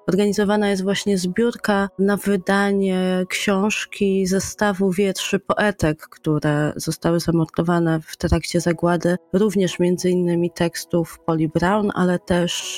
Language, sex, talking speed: Polish, female, 115 wpm